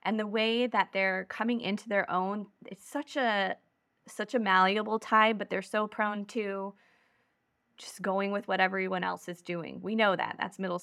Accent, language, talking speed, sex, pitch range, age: American, English, 190 wpm, female, 190-230 Hz, 20-39